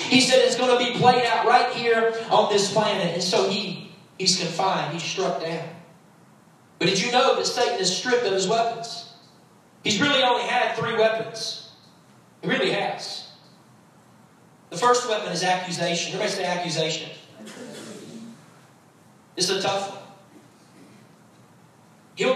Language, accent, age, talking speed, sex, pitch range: English, American, 40-59, 145 wpm, male, 190-245 Hz